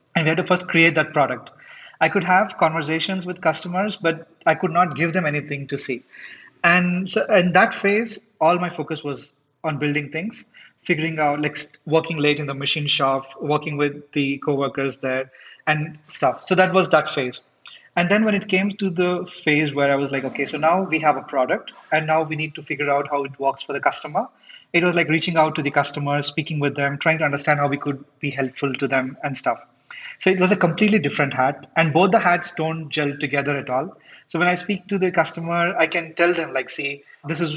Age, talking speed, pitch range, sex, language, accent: 30-49, 225 wpm, 145-175 Hz, male, English, Indian